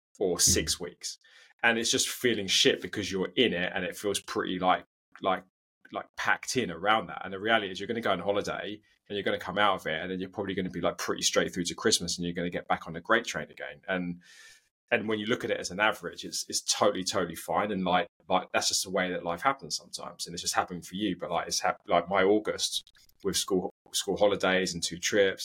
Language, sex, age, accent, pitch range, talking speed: English, male, 20-39, British, 85-110 Hz, 260 wpm